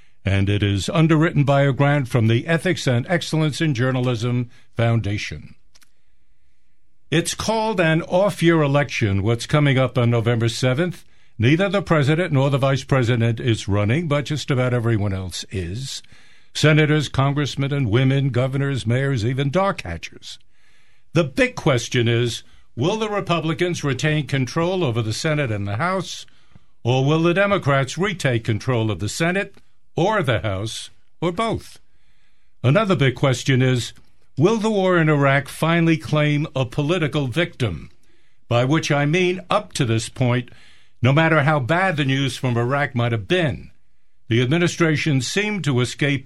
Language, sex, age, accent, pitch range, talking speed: English, male, 60-79, American, 120-165 Hz, 155 wpm